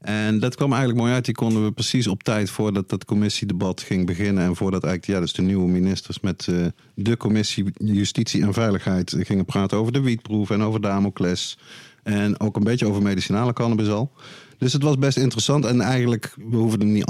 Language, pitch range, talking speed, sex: Dutch, 95-120 Hz, 205 wpm, male